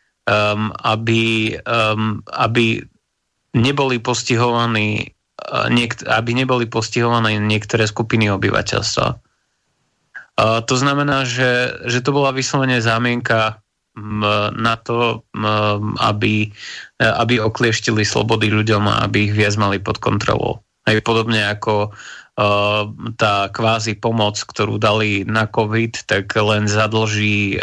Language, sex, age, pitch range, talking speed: Slovak, male, 20-39, 105-120 Hz, 110 wpm